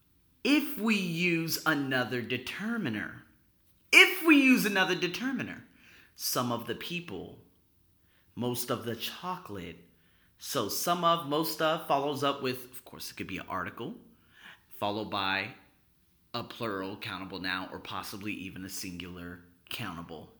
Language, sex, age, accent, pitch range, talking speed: English, male, 30-49, American, 105-160 Hz, 130 wpm